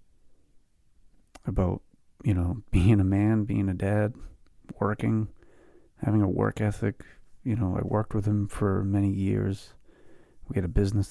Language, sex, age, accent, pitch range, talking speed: English, male, 30-49, American, 95-105 Hz, 145 wpm